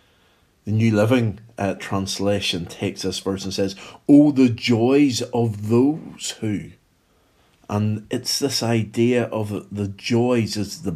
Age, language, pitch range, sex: 50-69, English, 100-125 Hz, male